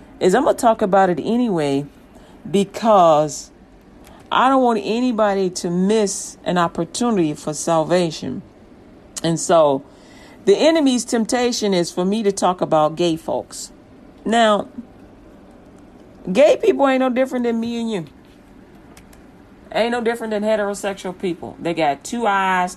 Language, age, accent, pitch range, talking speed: English, 40-59, American, 170-220 Hz, 135 wpm